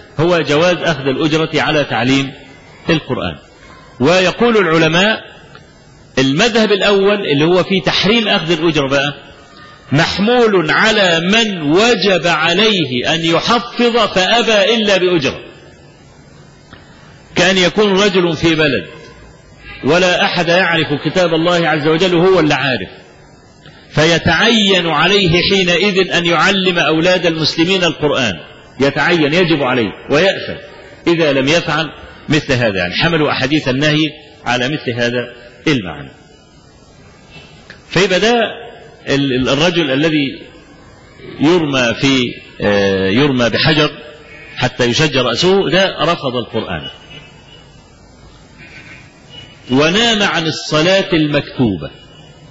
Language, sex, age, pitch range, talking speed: Arabic, male, 40-59, 140-185 Hz, 95 wpm